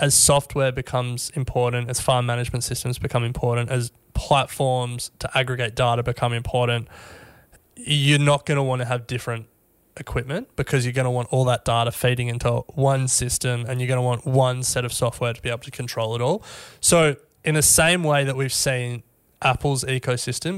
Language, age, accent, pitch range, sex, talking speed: English, 20-39, Australian, 120-140 Hz, male, 185 wpm